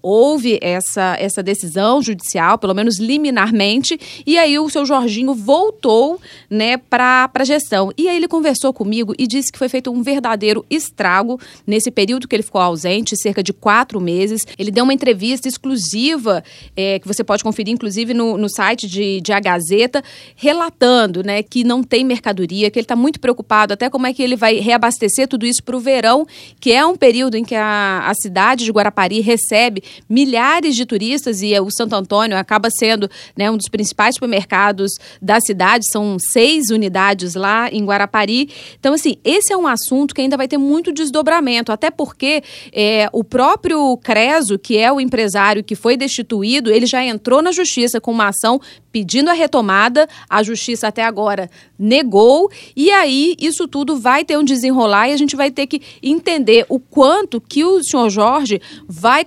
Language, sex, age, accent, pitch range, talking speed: Portuguese, female, 30-49, Brazilian, 210-275 Hz, 180 wpm